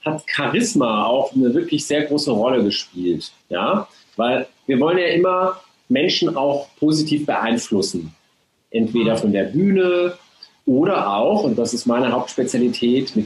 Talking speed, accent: 140 wpm, German